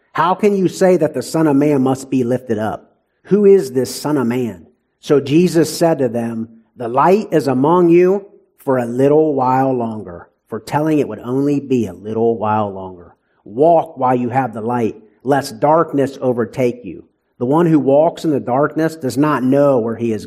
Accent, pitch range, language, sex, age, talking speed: American, 115-155 Hz, English, male, 50-69, 200 wpm